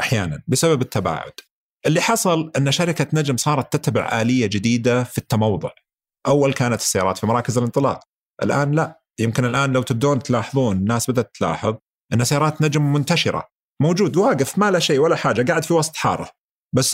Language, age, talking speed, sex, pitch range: Arabic, 40-59, 165 wpm, male, 115-155 Hz